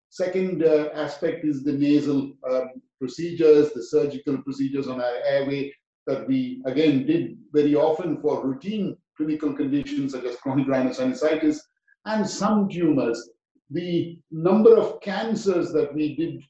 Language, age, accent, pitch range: English, 50-69, Indian, 135-225 Hz